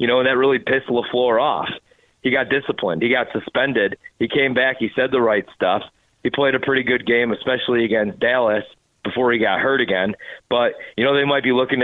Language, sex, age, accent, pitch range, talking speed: English, male, 40-59, American, 125-145 Hz, 220 wpm